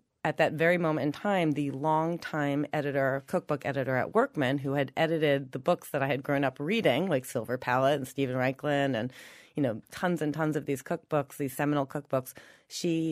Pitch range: 135-160 Hz